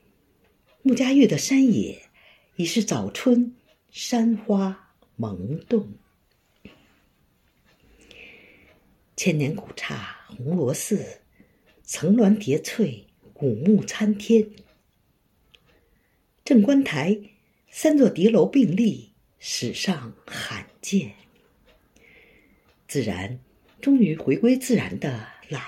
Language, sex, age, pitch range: Chinese, female, 50-69, 170-235 Hz